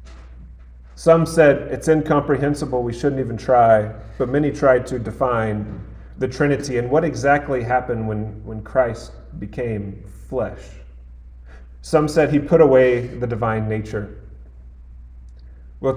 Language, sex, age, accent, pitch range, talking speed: English, male, 30-49, American, 100-125 Hz, 125 wpm